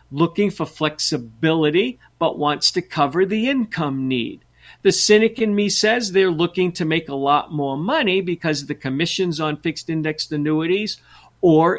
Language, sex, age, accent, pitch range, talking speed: English, male, 50-69, American, 135-170 Hz, 165 wpm